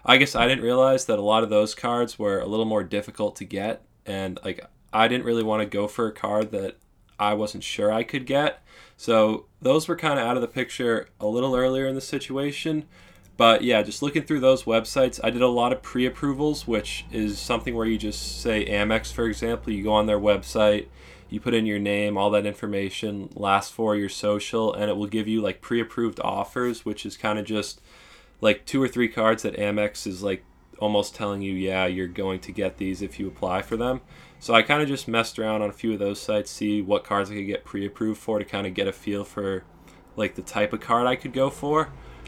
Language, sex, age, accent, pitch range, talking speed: English, male, 20-39, American, 100-120 Hz, 235 wpm